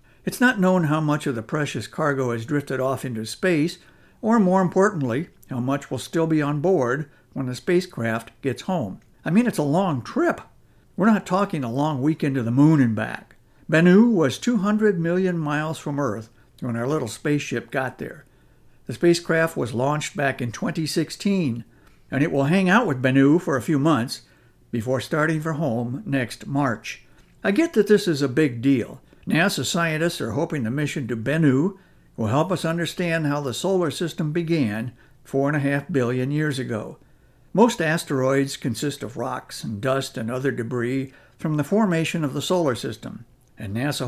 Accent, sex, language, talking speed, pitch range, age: American, male, English, 180 wpm, 130-170 Hz, 60-79